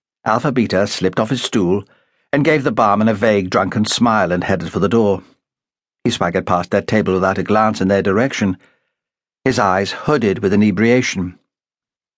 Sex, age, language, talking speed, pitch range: male, 60-79, English, 170 wpm, 100-140 Hz